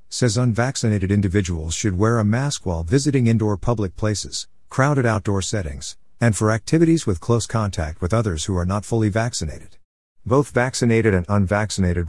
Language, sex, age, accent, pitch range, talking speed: English, male, 50-69, American, 90-115 Hz, 160 wpm